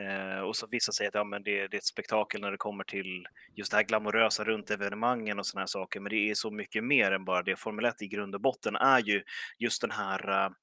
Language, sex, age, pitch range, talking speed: Swedish, male, 30-49, 100-125 Hz, 255 wpm